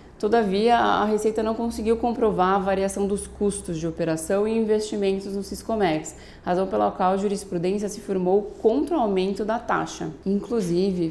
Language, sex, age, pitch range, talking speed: Portuguese, female, 20-39, 180-210 Hz, 155 wpm